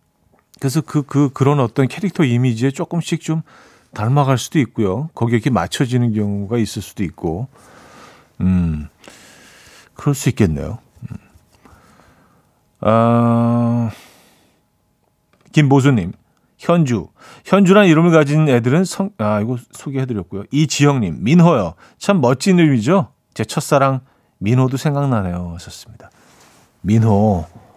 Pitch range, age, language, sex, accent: 110-155 Hz, 40-59, Korean, male, native